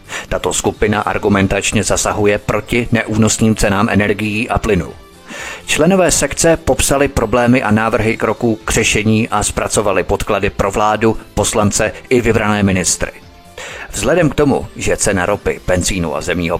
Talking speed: 135 wpm